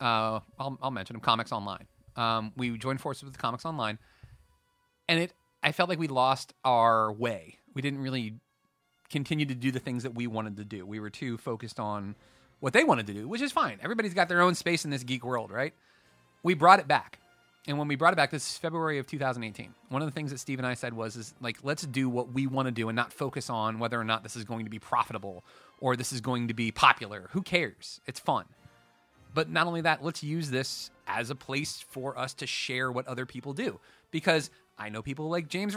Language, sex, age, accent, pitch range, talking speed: English, male, 30-49, American, 115-165 Hz, 235 wpm